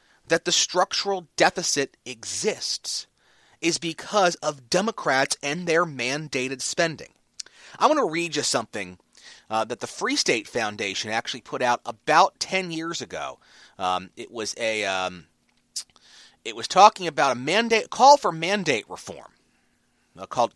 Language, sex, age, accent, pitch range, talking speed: English, male, 30-49, American, 125-195 Hz, 145 wpm